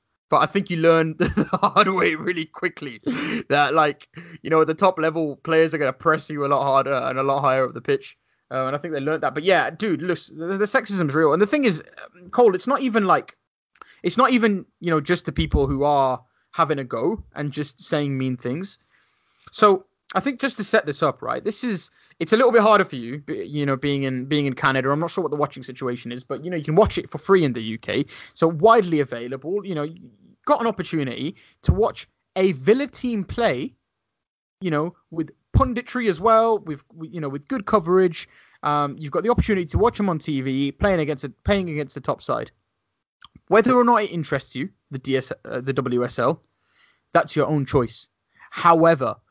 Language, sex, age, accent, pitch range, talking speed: English, male, 20-39, British, 140-195 Hz, 225 wpm